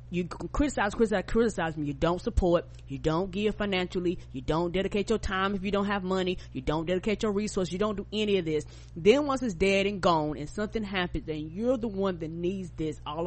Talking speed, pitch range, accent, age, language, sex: 225 wpm, 160-215 Hz, American, 20-39, English, female